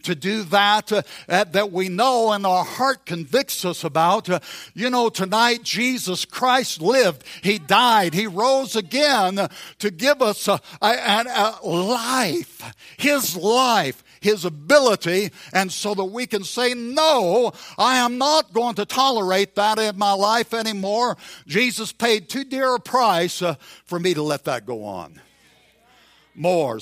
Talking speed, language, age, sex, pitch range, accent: 150 wpm, English, 60-79, male, 145-210 Hz, American